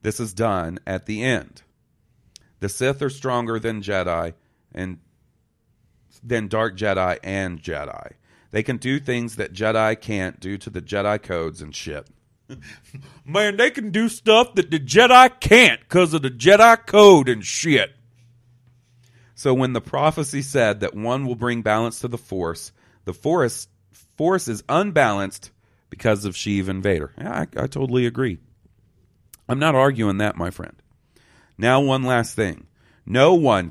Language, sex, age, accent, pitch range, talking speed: English, male, 40-59, American, 95-130 Hz, 155 wpm